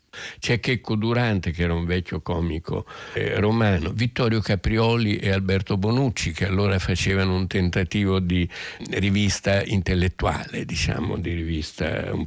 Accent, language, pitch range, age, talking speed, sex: native, Italian, 85-105 Hz, 60-79, 130 wpm, male